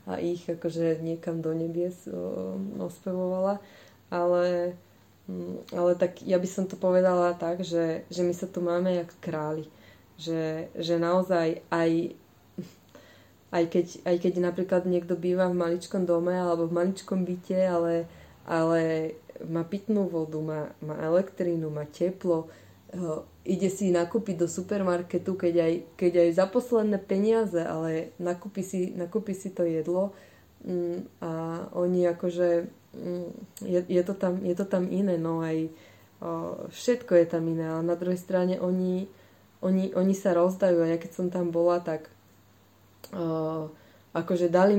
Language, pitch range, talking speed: Slovak, 165-185 Hz, 145 wpm